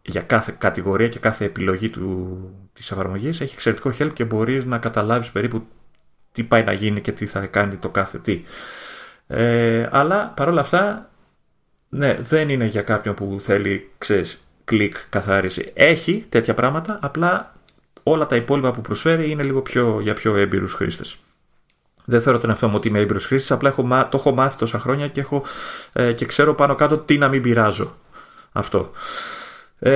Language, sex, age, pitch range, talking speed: Greek, male, 30-49, 105-135 Hz, 170 wpm